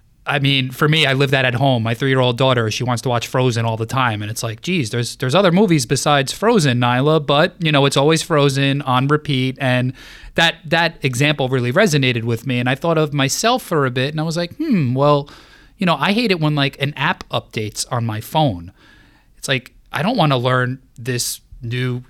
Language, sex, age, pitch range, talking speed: English, male, 20-39, 125-175 Hz, 225 wpm